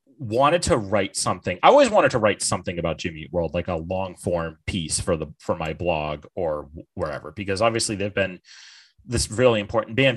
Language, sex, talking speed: English, male, 200 wpm